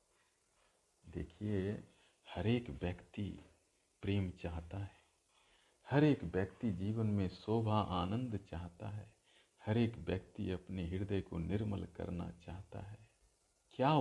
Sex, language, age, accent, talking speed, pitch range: male, Hindi, 50-69, native, 115 wpm, 90-115 Hz